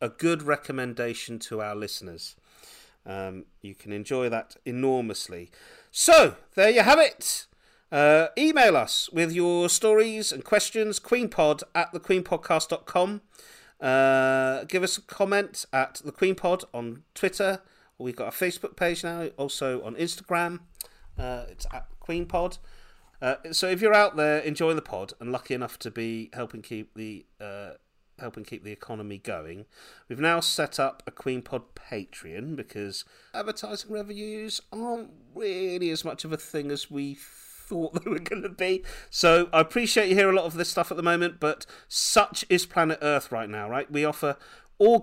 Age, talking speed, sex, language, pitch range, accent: 40-59, 165 wpm, male, English, 120-180 Hz, British